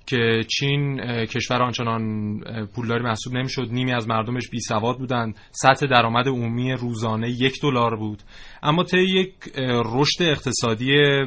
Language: Persian